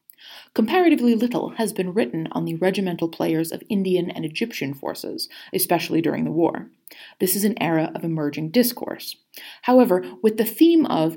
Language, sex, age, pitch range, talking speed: English, female, 30-49, 165-245 Hz, 160 wpm